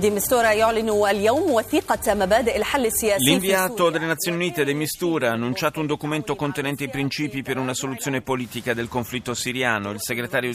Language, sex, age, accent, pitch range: Italian, male, 40-59, native, 120-170 Hz